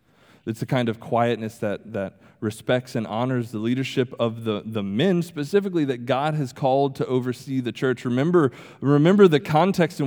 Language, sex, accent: English, male, American